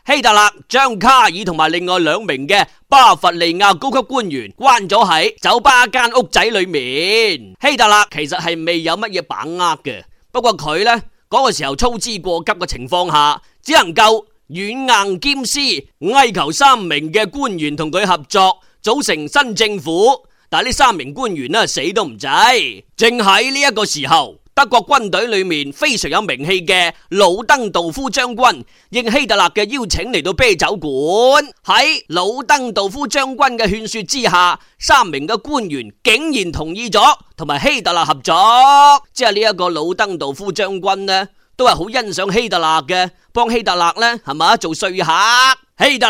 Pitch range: 190-270 Hz